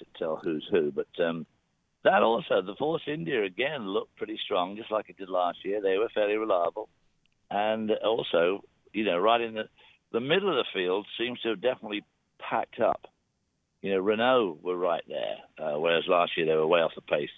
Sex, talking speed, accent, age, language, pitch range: male, 205 wpm, British, 60-79, English, 80-115 Hz